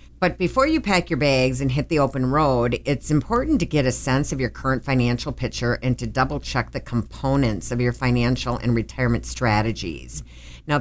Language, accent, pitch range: English, American, 115-150 Hz